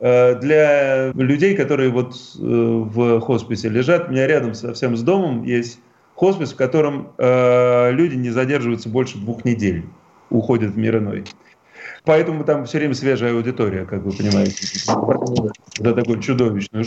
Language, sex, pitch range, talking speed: Russian, male, 120-150 Hz, 145 wpm